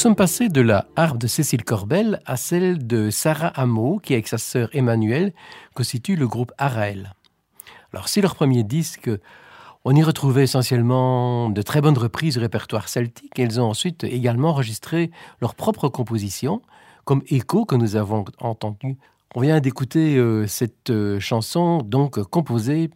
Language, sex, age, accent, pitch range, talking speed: French, male, 50-69, French, 115-160 Hz, 155 wpm